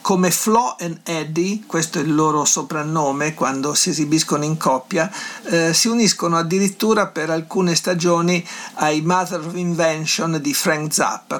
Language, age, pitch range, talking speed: Italian, 50-69, 150-180 Hz, 145 wpm